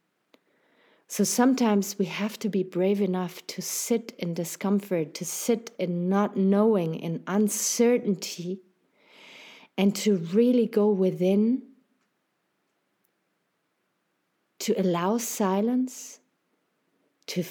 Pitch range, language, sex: 175-210 Hz, English, female